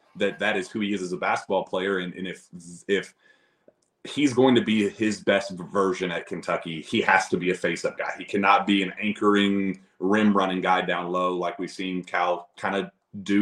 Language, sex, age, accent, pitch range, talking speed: English, male, 30-49, American, 90-105 Hz, 210 wpm